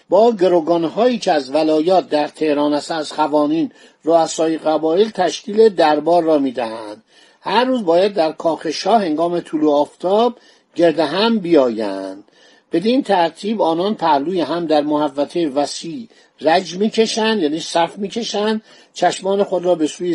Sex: male